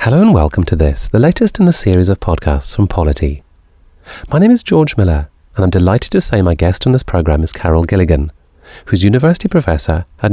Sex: male